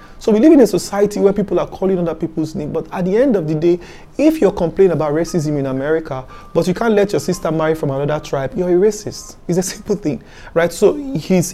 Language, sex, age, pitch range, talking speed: English, male, 30-49, 150-195 Hz, 245 wpm